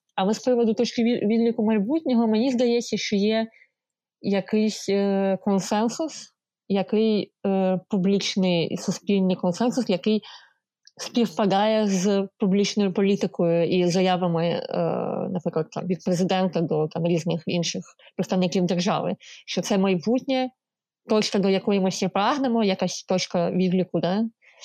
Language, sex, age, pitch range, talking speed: Ukrainian, female, 20-39, 180-210 Hz, 120 wpm